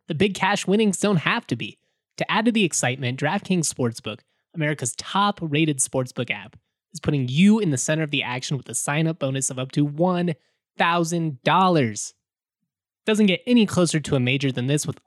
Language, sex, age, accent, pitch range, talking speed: English, male, 20-39, American, 140-175 Hz, 185 wpm